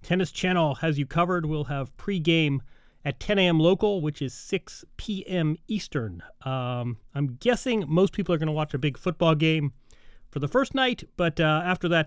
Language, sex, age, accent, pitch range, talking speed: English, male, 30-49, American, 135-170 Hz, 190 wpm